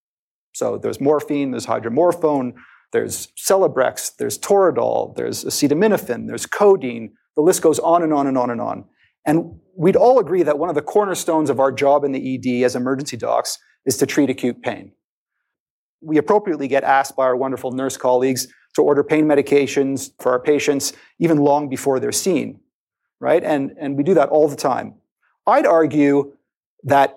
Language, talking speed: English, 175 wpm